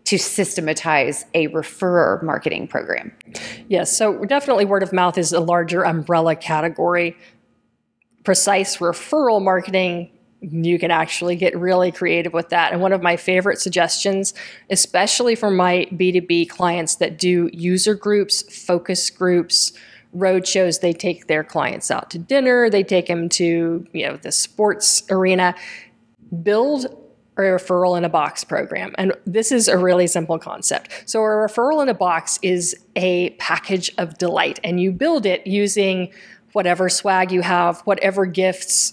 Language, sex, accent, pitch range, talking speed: English, female, American, 175-195 Hz, 155 wpm